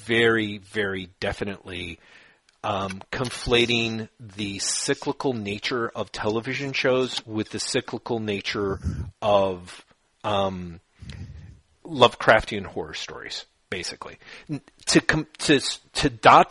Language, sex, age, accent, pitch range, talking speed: English, male, 40-59, American, 100-120 Hz, 100 wpm